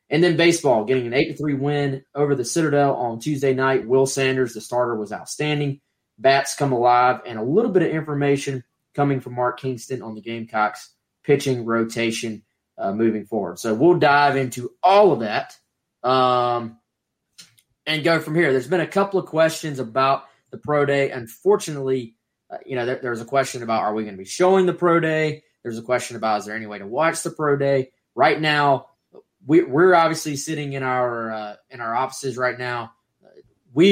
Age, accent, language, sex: 20-39, American, English, male